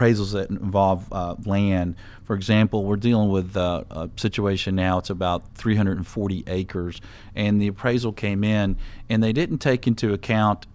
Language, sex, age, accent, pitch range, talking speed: English, male, 40-59, American, 95-110 Hz, 160 wpm